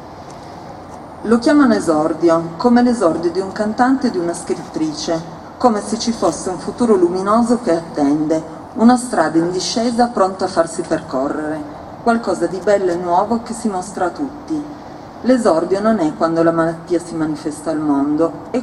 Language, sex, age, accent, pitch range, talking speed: Italian, female, 40-59, native, 165-225 Hz, 160 wpm